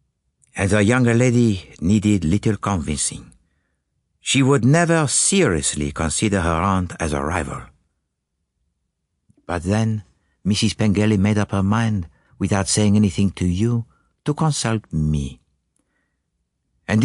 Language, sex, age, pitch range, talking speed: English, male, 60-79, 80-115 Hz, 120 wpm